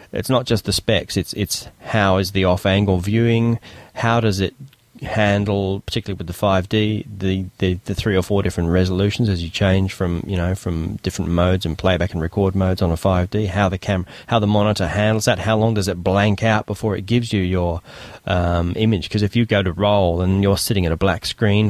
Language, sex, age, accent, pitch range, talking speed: English, male, 30-49, Australian, 90-110 Hz, 225 wpm